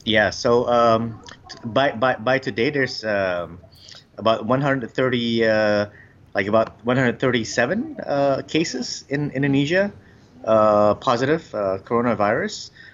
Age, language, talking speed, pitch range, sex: 30-49, English, 105 wpm, 100-120 Hz, male